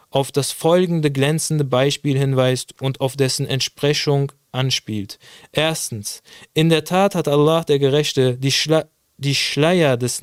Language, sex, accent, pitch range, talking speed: German, male, German, 140-175 Hz, 140 wpm